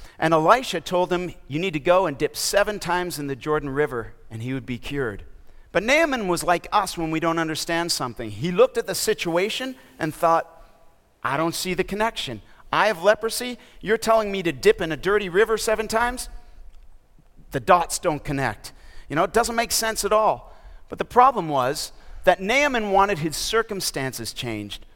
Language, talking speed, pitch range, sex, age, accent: English, 190 wpm, 145-215 Hz, male, 50-69, American